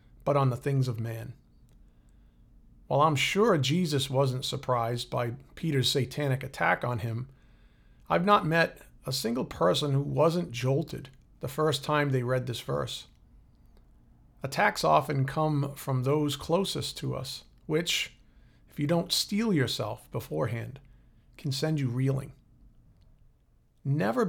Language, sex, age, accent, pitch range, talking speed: English, male, 40-59, American, 125-155 Hz, 135 wpm